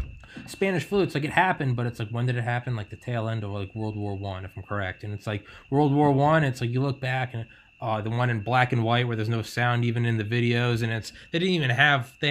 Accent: American